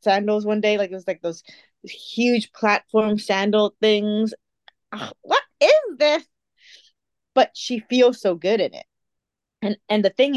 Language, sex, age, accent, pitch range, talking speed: English, female, 20-39, American, 195-240 Hz, 150 wpm